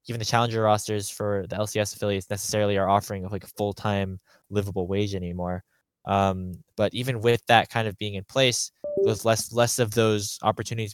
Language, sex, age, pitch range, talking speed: English, male, 10-29, 100-115 Hz, 180 wpm